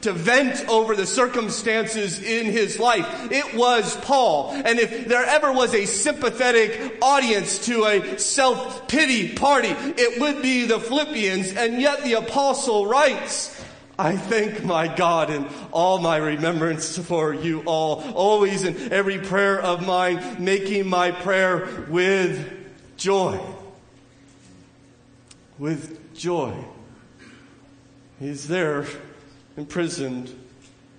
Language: English